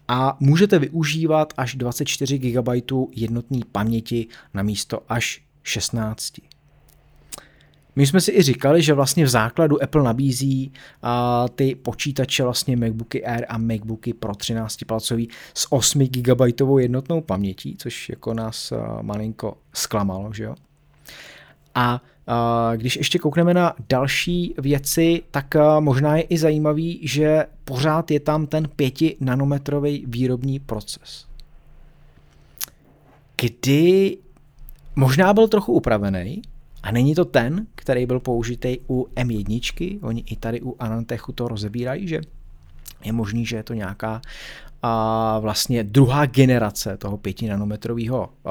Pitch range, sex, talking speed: 115-145 Hz, male, 125 wpm